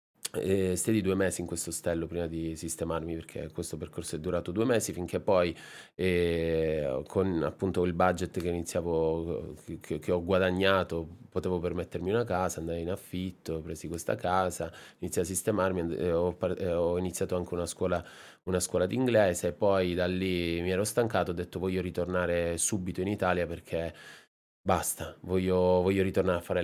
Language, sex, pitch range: Italian, male, 90-105 Hz